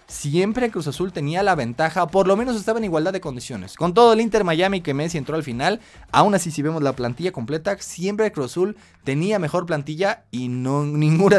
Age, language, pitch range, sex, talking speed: 20-39, Spanish, 125-165 Hz, male, 205 wpm